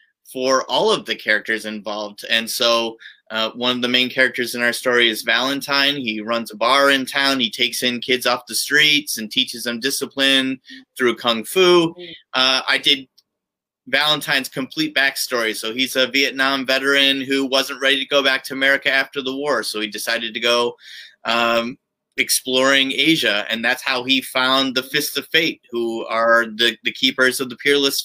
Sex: male